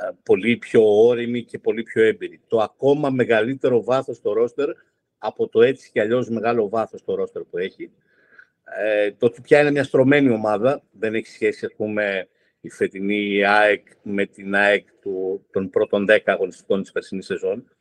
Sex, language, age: male, Greek, 50-69